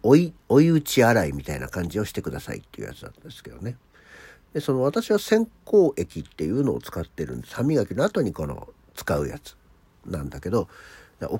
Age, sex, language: 50-69, male, Japanese